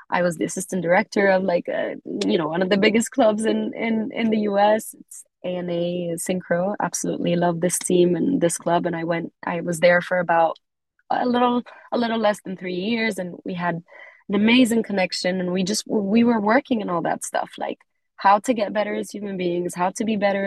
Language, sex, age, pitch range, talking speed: English, female, 20-39, 175-220 Hz, 220 wpm